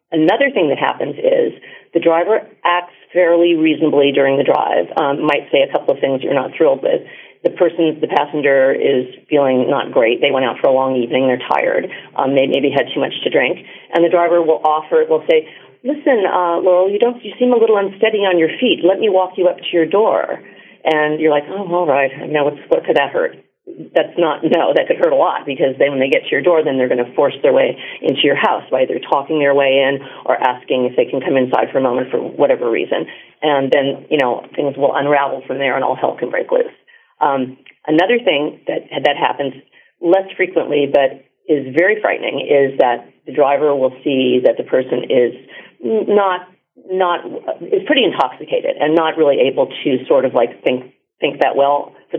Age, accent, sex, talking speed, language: 40-59, American, female, 215 wpm, English